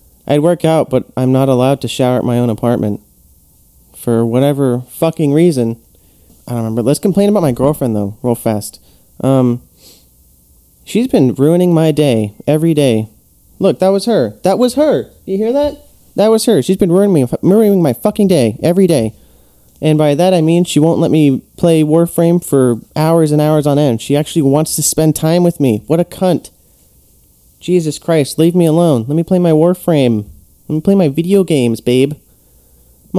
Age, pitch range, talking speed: 30-49, 115-165 Hz, 190 wpm